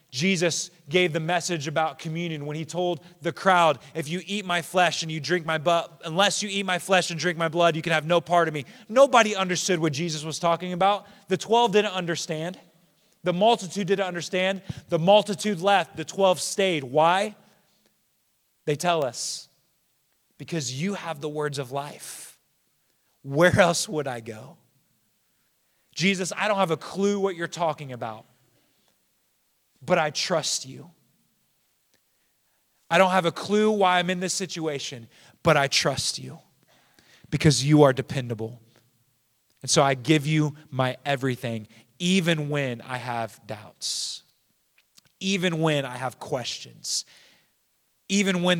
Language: English